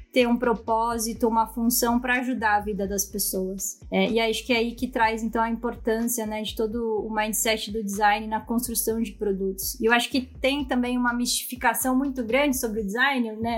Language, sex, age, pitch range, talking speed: Portuguese, female, 20-39, 225-260 Hz, 210 wpm